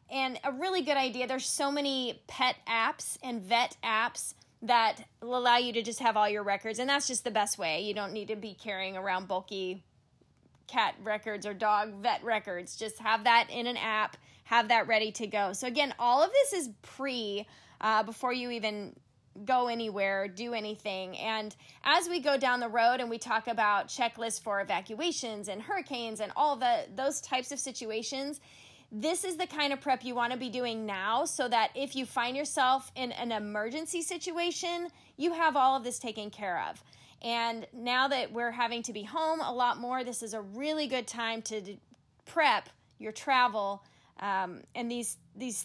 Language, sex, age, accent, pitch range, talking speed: English, female, 10-29, American, 215-260 Hz, 190 wpm